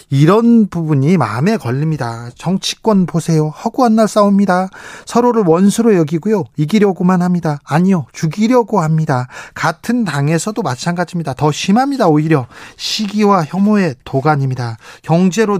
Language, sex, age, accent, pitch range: Korean, male, 40-59, native, 155-200 Hz